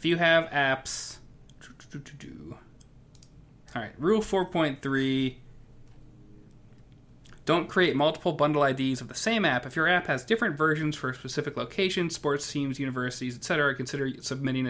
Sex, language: male, English